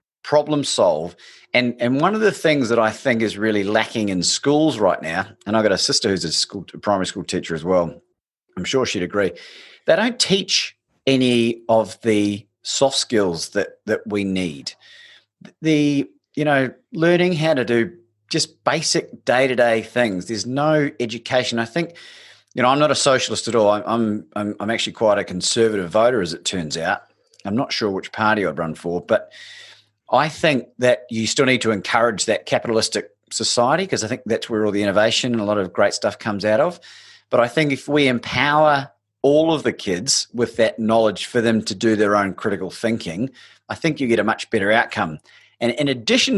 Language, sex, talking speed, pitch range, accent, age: English, male, 200 wpm, 105-145 Hz, Australian, 30-49